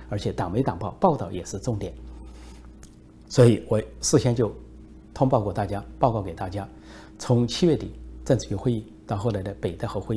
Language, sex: Chinese, male